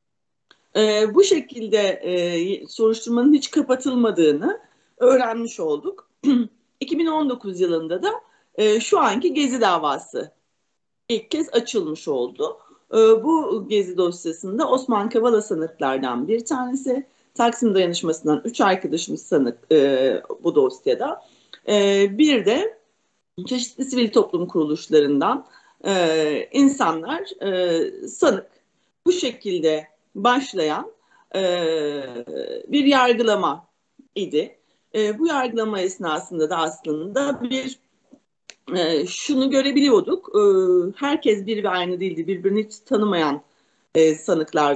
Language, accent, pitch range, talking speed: Turkish, native, 180-285 Hz, 105 wpm